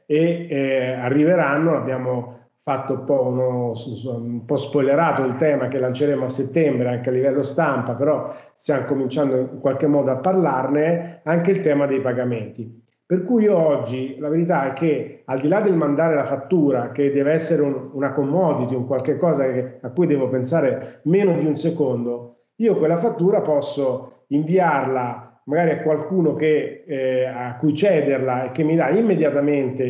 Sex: male